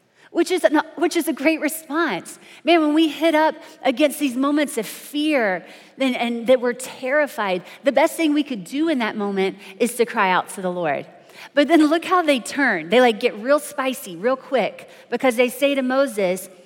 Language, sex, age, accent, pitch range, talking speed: English, female, 30-49, American, 235-310 Hz, 200 wpm